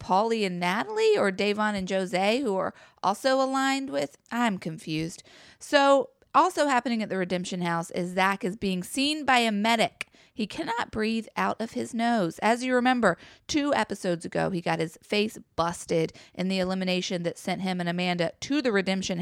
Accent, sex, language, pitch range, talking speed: American, female, English, 185-240 Hz, 180 wpm